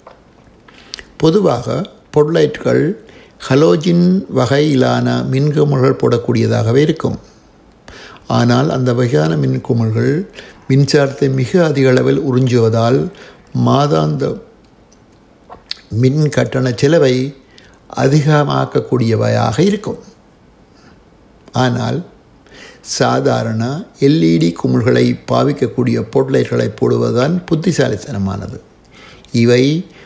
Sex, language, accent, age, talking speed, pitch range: male, Tamil, native, 60-79, 60 wpm, 105-140 Hz